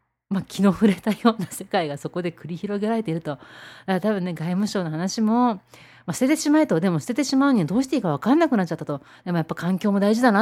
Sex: female